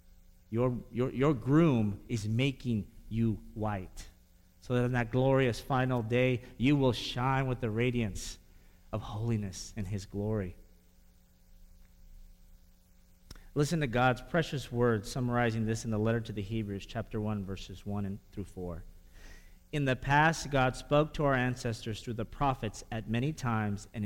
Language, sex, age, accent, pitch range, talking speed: English, male, 40-59, American, 100-145 Hz, 150 wpm